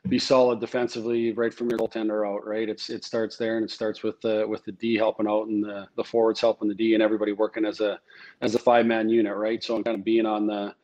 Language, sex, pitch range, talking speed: English, male, 105-115 Hz, 265 wpm